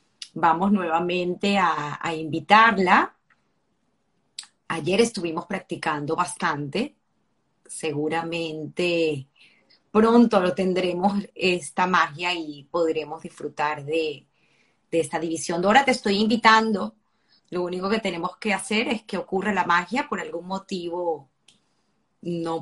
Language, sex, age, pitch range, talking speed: Spanish, female, 30-49, 160-205 Hz, 110 wpm